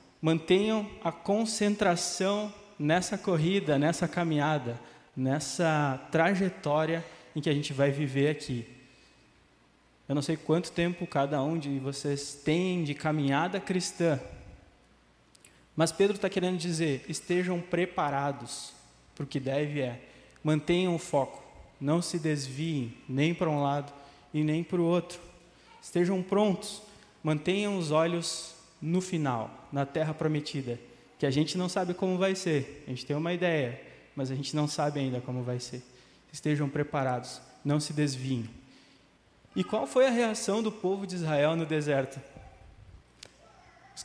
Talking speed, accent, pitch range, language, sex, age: 145 wpm, Brazilian, 140-175 Hz, Portuguese, male, 20-39